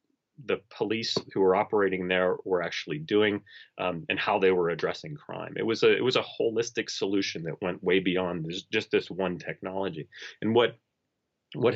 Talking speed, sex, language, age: 180 wpm, male, English, 30-49